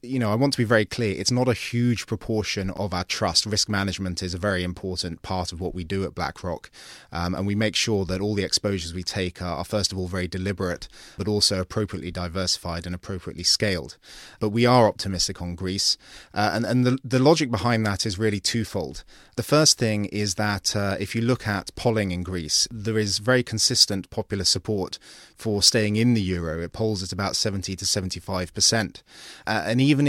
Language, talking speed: English, 210 wpm